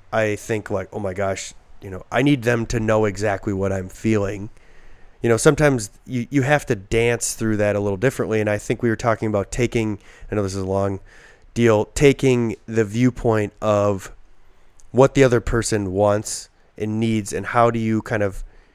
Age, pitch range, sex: 20-39, 100-115 Hz, male